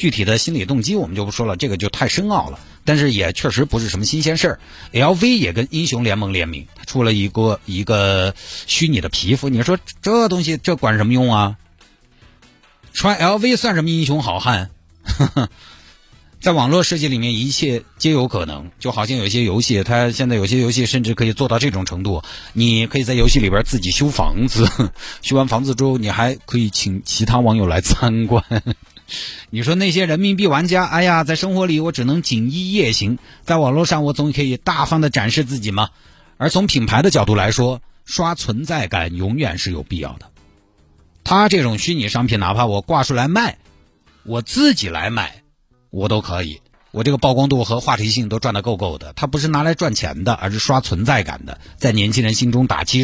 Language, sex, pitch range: Chinese, male, 100-140 Hz